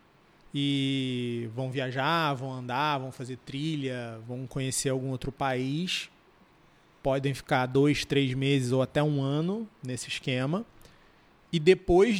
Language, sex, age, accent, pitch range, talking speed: Portuguese, male, 20-39, Brazilian, 130-170 Hz, 130 wpm